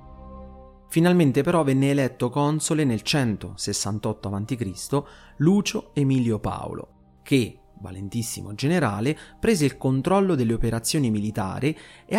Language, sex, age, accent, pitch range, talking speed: Italian, male, 30-49, native, 105-150 Hz, 105 wpm